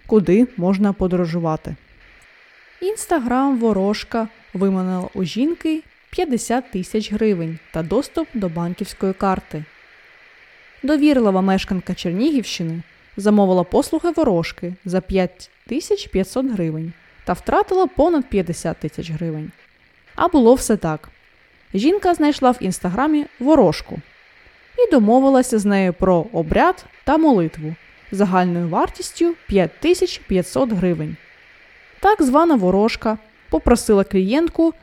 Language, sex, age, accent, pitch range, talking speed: Ukrainian, female, 20-39, native, 180-270 Hz, 100 wpm